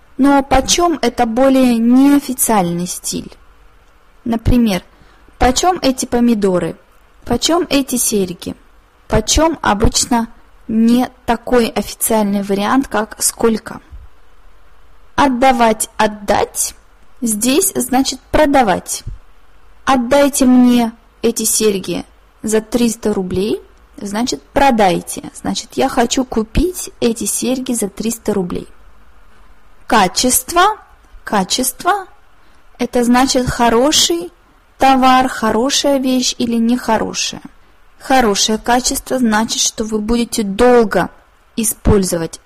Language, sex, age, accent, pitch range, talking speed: Russian, female, 20-39, native, 210-265 Hz, 90 wpm